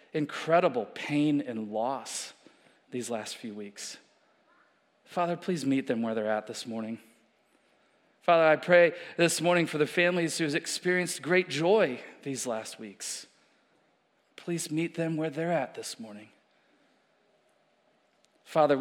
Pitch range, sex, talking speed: 120-160 Hz, male, 130 wpm